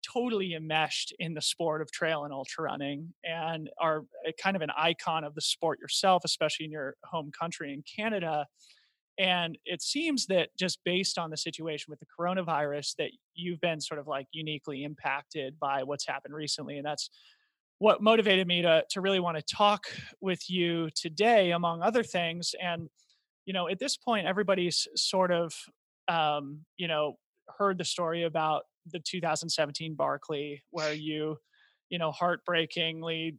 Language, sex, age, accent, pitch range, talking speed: English, male, 30-49, American, 150-180 Hz, 165 wpm